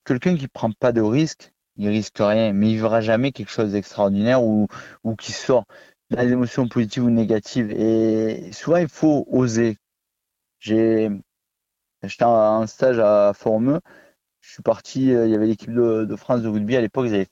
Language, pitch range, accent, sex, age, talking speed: French, 110-125 Hz, French, male, 30-49, 190 wpm